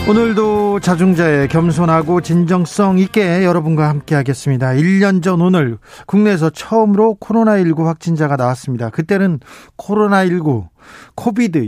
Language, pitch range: Korean, 135-185 Hz